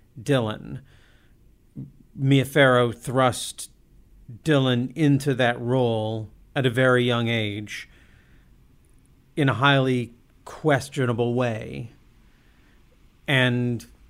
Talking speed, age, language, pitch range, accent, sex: 75 wpm, 50-69, English, 115-130 Hz, American, male